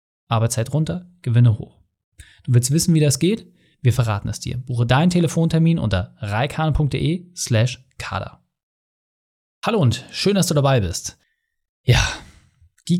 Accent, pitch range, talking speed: German, 120-160 Hz, 130 wpm